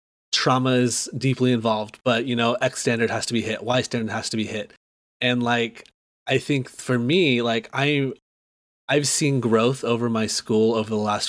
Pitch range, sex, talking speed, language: 110-130 Hz, male, 190 wpm, English